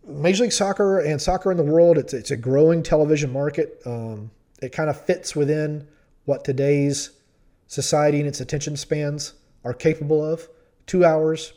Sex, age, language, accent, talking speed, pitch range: male, 30-49, English, American, 160 wpm, 130-160 Hz